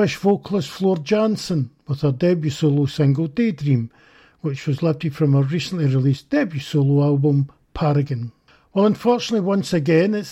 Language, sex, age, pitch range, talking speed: English, male, 50-69, 145-195 Hz, 145 wpm